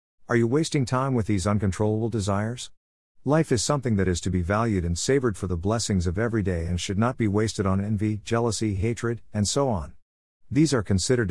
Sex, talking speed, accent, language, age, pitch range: male, 205 wpm, American, English, 50-69, 90-115 Hz